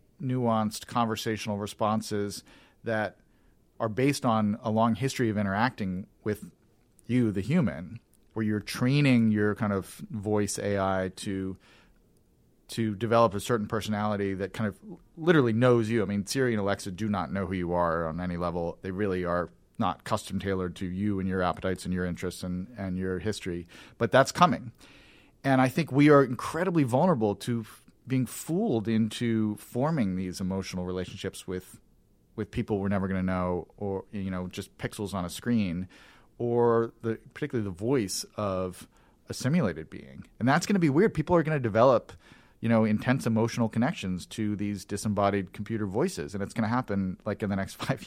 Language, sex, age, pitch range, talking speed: English, male, 40-59, 95-120 Hz, 175 wpm